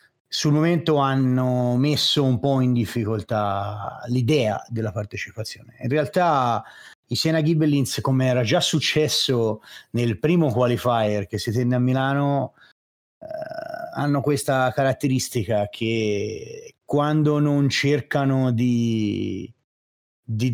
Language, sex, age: Italian, male, 30-49